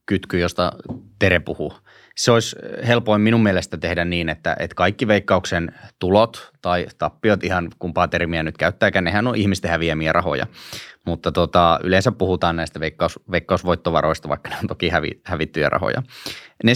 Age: 20-39